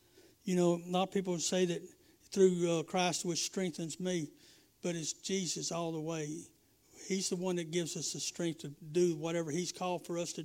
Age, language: 60-79, English